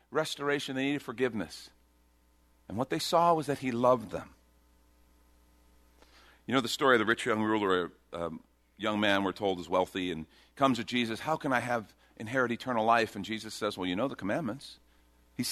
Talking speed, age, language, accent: 190 wpm, 50-69, English, American